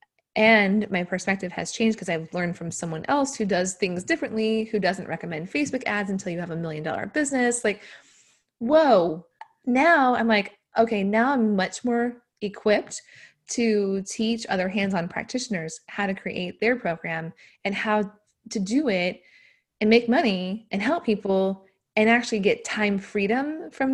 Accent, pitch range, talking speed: American, 175-225 Hz, 165 wpm